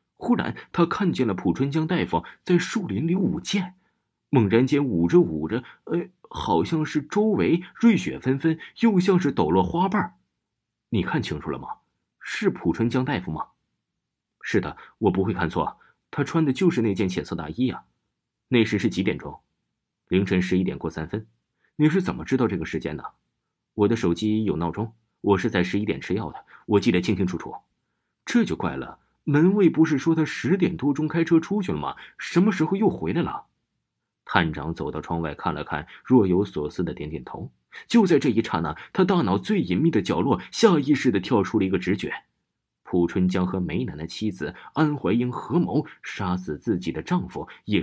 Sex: male